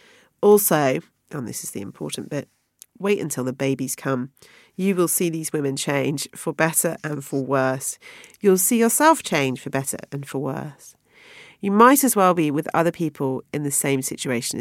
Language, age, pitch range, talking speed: English, 40-59, 135-215 Hz, 180 wpm